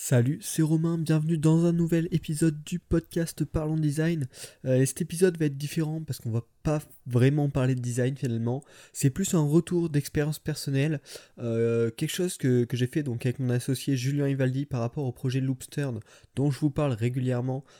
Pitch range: 120-160 Hz